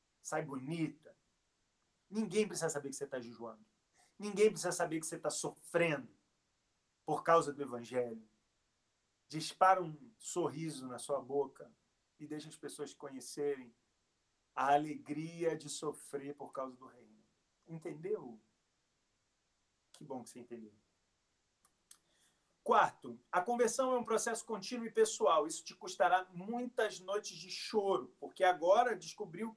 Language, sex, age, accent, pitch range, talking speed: Portuguese, male, 40-59, Brazilian, 145-220 Hz, 130 wpm